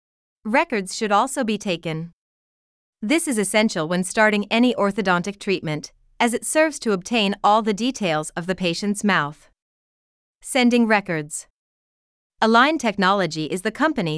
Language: Spanish